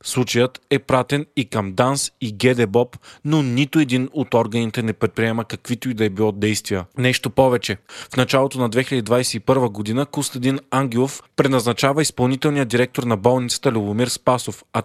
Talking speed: 155 wpm